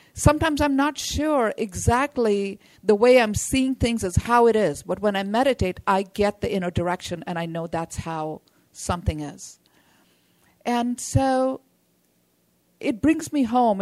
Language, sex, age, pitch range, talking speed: English, female, 50-69, 180-240 Hz, 155 wpm